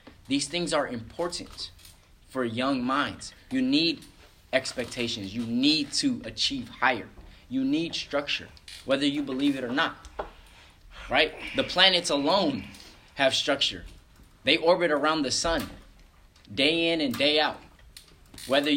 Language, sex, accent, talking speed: English, male, American, 130 wpm